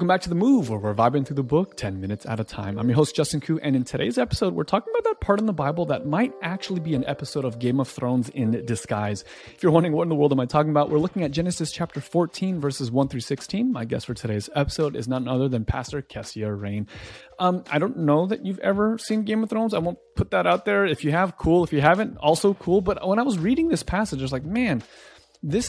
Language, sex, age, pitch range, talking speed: English, male, 30-49, 125-175 Hz, 270 wpm